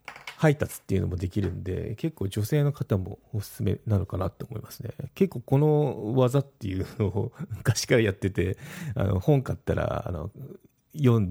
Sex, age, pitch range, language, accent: male, 40-59, 100-130 Hz, Japanese, native